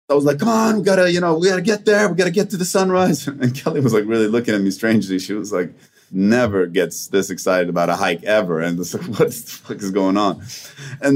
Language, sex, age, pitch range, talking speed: English, male, 30-49, 105-160 Hz, 275 wpm